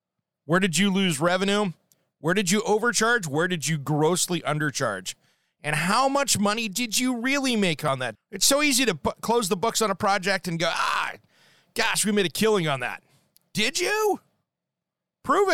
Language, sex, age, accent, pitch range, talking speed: English, male, 30-49, American, 160-225 Hz, 180 wpm